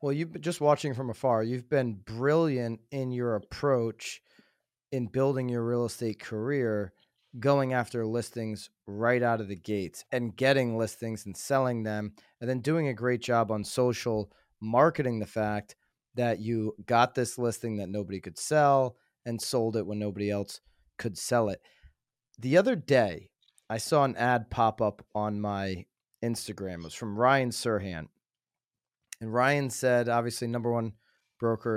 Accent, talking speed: American, 160 wpm